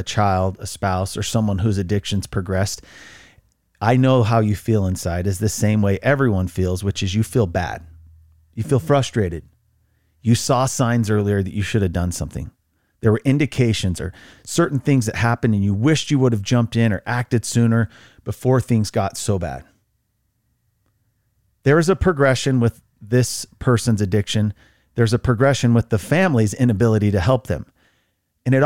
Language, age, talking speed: English, 40-59, 175 wpm